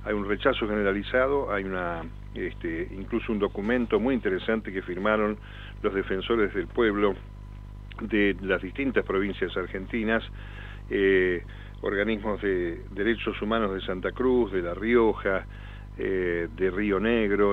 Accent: Argentinian